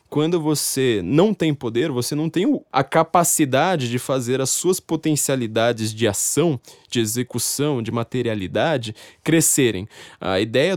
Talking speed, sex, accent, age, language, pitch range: 135 wpm, male, Brazilian, 20-39, Portuguese, 115-145 Hz